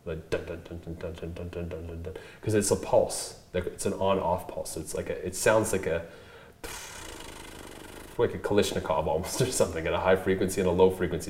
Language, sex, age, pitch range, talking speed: English, male, 30-49, 85-95 Hz, 165 wpm